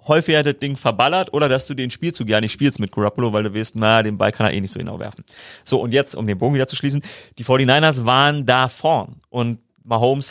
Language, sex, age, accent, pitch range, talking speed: German, male, 30-49, German, 110-140 Hz, 250 wpm